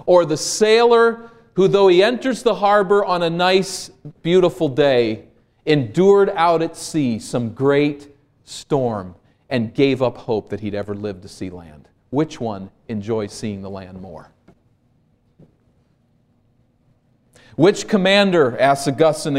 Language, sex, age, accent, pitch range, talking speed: English, male, 40-59, American, 120-165 Hz, 135 wpm